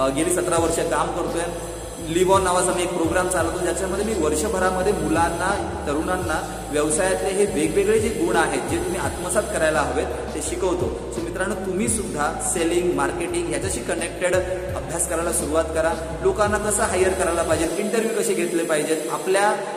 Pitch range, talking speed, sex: 155-190 Hz, 160 wpm, male